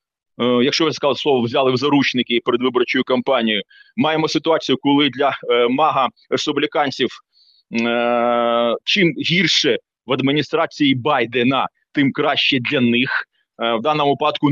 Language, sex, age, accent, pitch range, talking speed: Ukrainian, male, 30-49, native, 130-155 Hz, 125 wpm